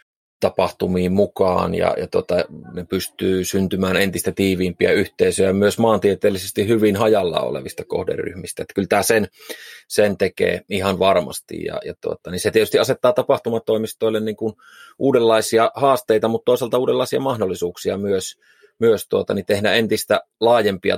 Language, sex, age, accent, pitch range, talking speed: Finnish, male, 30-49, native, 100-115 Hz, 135 wpm